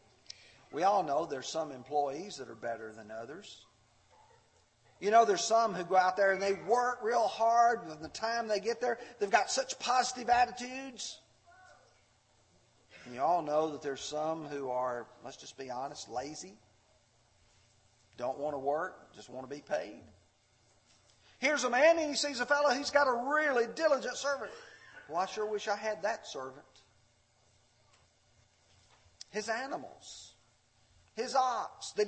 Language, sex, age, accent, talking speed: English, male, 40-59, American, 160 wpm